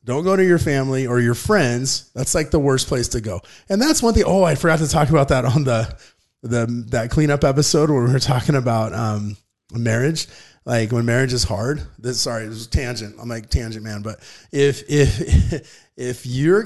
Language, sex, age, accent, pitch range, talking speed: English, male, 30-49, American, 115-145 Hz, 210 wpm